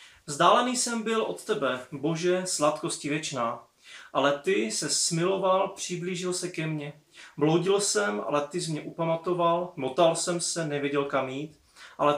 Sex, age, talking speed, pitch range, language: male, 30-49, 150 wpm, 150-190 Hz, Czech